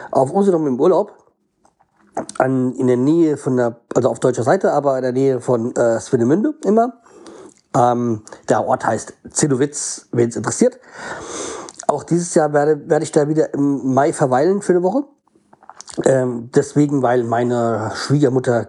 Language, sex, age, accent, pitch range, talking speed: German, male, 40-59, German, 130-170 Hz, 155 wpm